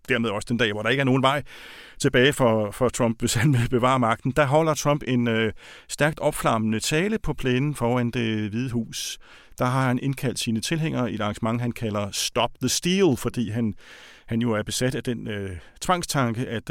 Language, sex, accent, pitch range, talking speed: Danish, male, native, 110-135 Hz, 210 wpm